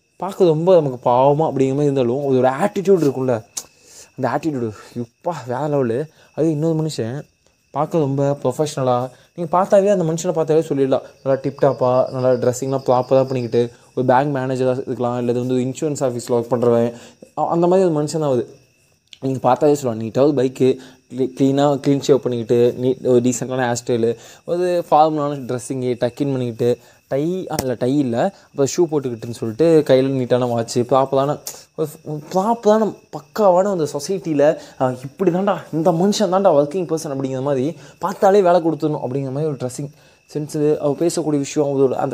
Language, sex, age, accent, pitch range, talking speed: Tamil, male, 20-39, native, 130-170 Hz, 150 wpm